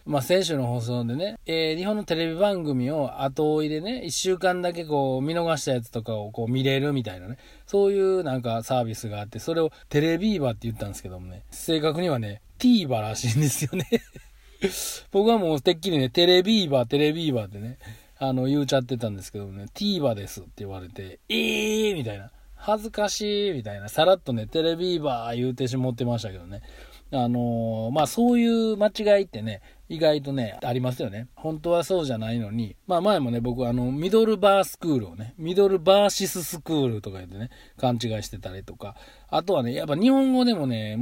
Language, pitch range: Japanese, 115-170 Hz